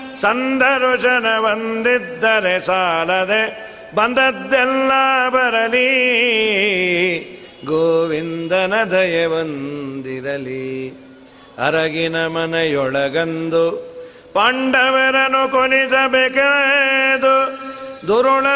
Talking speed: 35 wpm